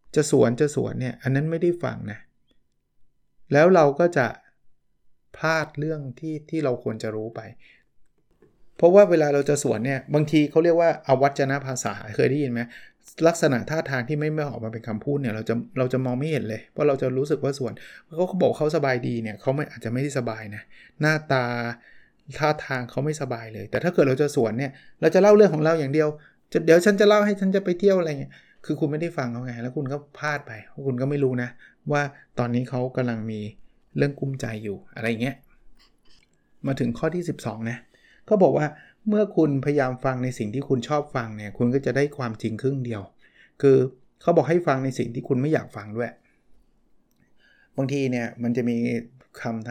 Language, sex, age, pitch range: Thai, male, 20-39, 120-150 Hz